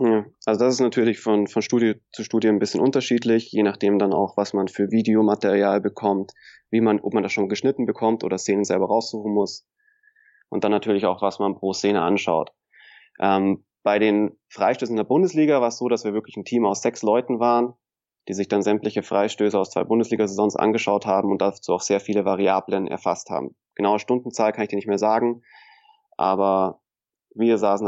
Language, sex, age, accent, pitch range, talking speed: German, male, 20-39, German, 100-115 Hz, 195 wpm